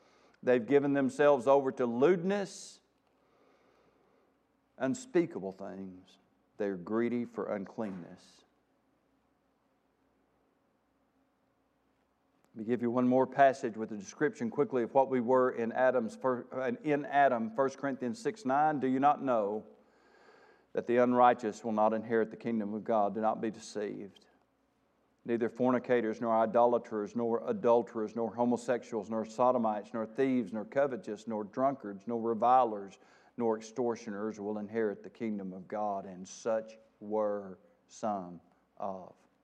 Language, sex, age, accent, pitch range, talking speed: English, male, 50-69, American, 105-130 Hz, 125 wpm